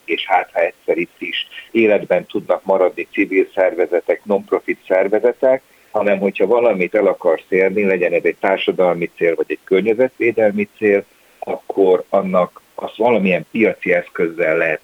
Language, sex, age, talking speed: Hungarian, male, 60-79, 140 wpm